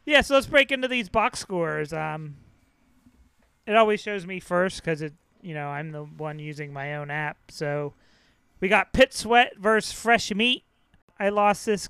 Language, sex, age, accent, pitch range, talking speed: English, male, 30-49, American, 165-215 Hz, 175 wpm